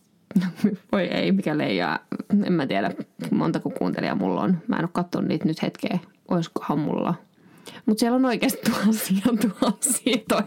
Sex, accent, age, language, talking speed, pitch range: female, native, 20-39, Finnish, 145 wpm, 170-220 Hz